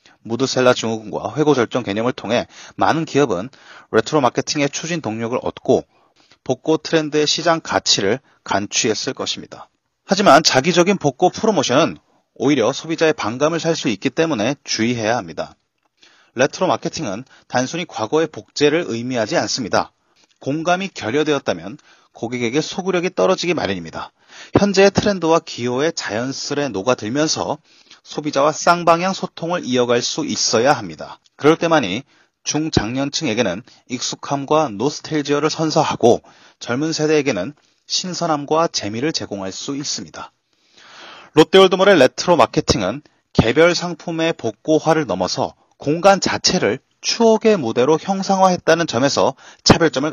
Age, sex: 30-49, male